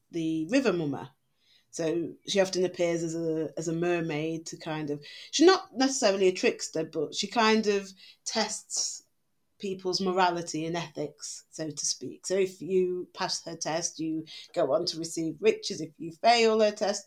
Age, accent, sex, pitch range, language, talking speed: 30-49, British, female, 165-215 Hz, English, 170 wpm